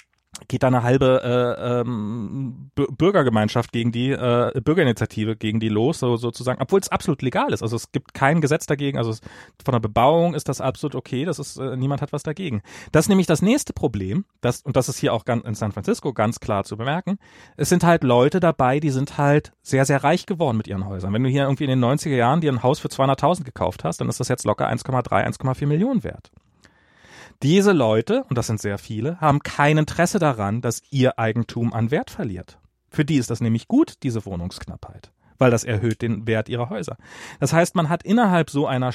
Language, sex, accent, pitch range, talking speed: German, male, German, 115-150 Hz, 215 wpm